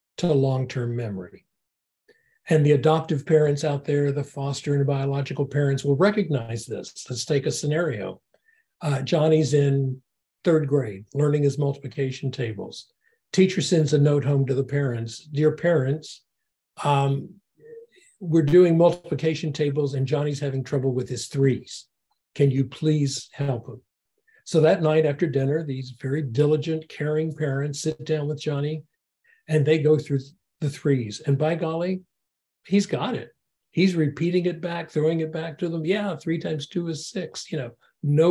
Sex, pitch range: male, 140-165 Hz